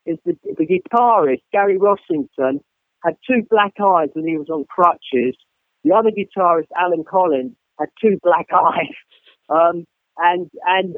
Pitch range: 160-215 Hz